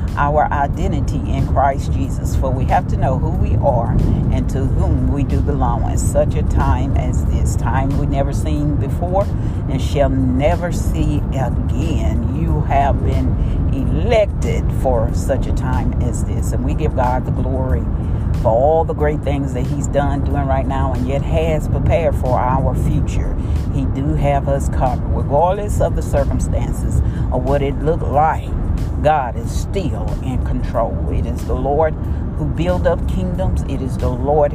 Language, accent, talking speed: English, American, 175 wpm